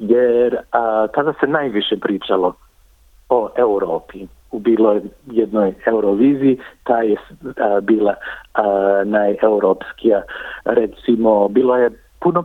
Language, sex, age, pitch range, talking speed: Croatian, male, 50-69, 100-120 Hz, 100 wpm